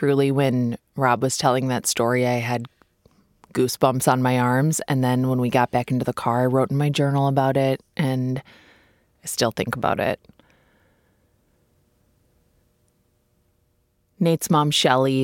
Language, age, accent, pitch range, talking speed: English, 20-39, American, 125-155 Hz, 150 wpm